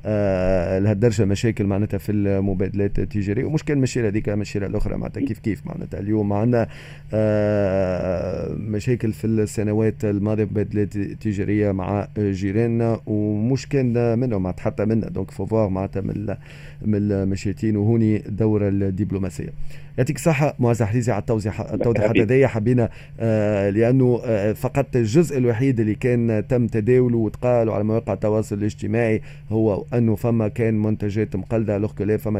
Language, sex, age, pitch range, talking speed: Arabic, male, 30-49, 105-125 Hz, 135 wpm